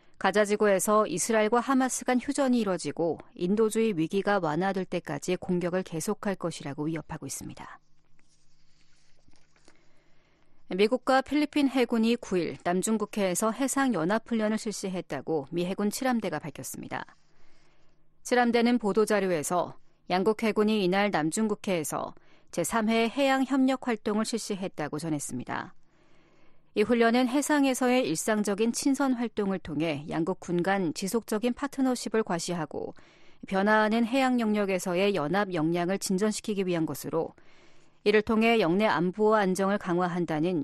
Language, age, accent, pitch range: Korean, 40-59, native, 180-230 Hz